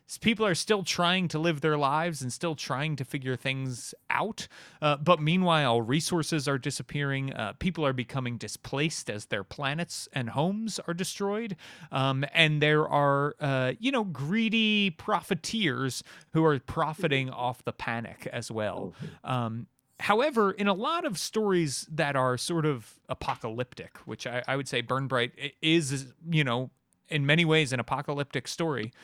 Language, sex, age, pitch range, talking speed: English, male, 30-49, 125-165 Hz, 160 wpm